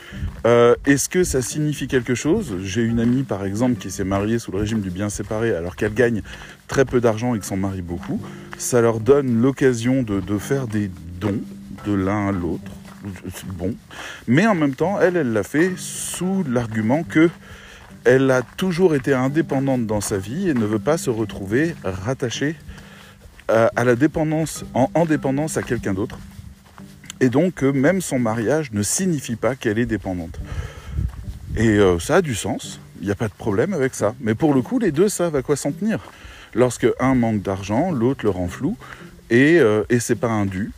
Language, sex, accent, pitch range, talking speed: French, male, French, 100-135 Hz, 195 wpm